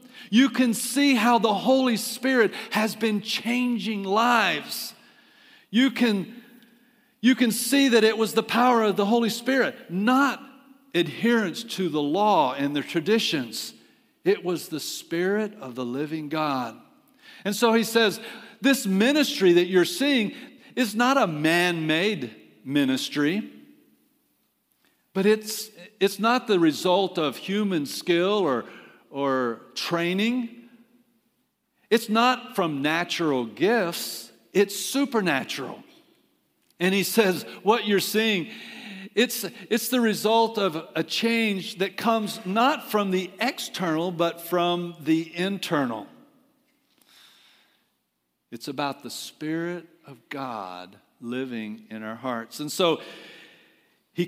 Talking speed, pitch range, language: 120 wpm, 170-235 Hz, English